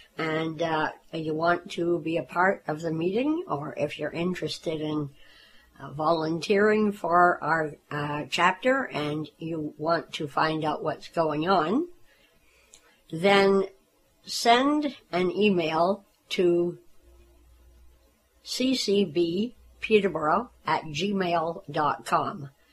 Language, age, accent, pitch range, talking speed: English, 60-79, American, 150-200 Hz, 105 wpm